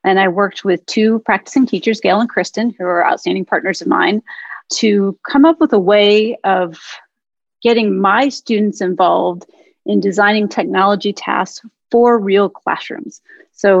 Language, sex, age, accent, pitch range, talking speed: English, female, 30-49, American, 190-235 Hz, 150 wpm